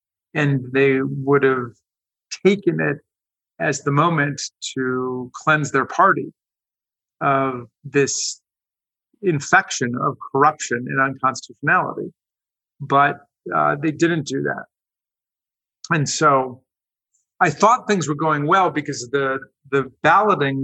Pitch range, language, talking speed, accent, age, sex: 130-145 Hz, English, 110 wpm, American, 50-69, male